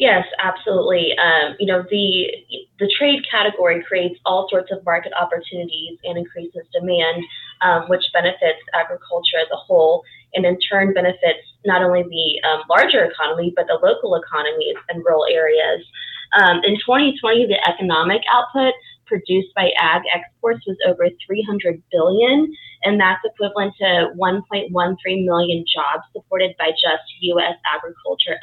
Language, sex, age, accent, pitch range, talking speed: English, female, 20-39, American, 175-245 Hz, 145 wpm